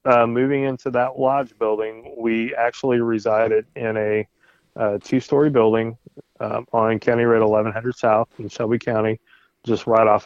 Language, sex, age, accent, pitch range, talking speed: English, male, 20-39, American, 110-120 Hz, 150 wpm